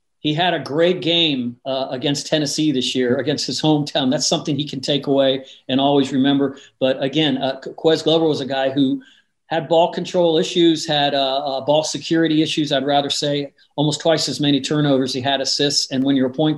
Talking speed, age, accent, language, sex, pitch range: 205 wpm, 40-59, American, English, male, 130-155 Hz